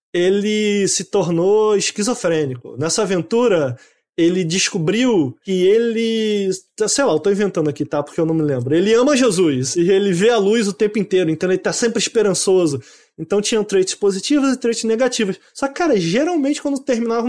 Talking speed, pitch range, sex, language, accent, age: 180 wpm, 180-230 Hz, male, English, Brazilian, 20-39